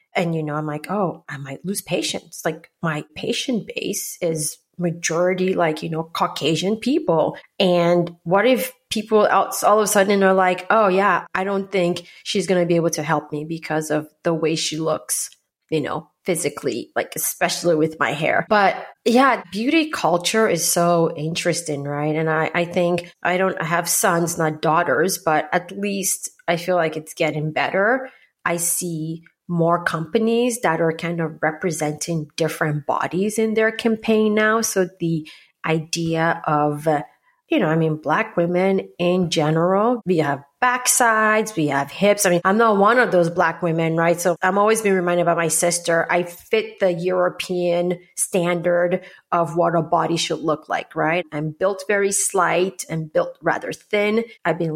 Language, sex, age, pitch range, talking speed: English, female, 30-49, 160-195 Hz, 175 wpm